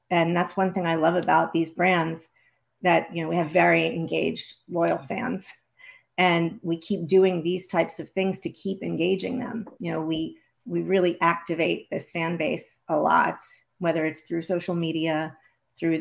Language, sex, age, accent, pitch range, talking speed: English, female, 40-59, American, 160-175 Hz, 175 wpm